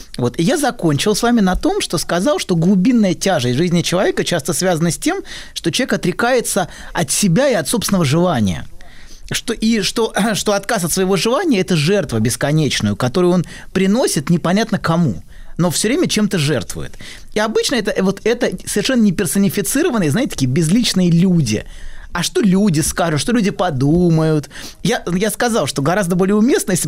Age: 20-39